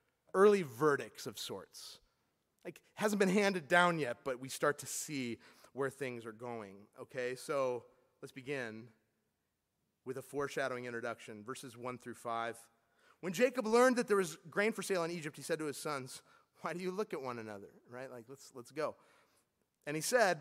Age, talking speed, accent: 30-49, 180 wpm, American